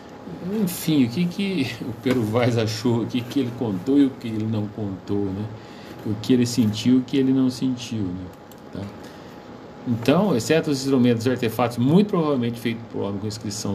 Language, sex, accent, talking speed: Portuguese, male, Brazilian, 190 wpm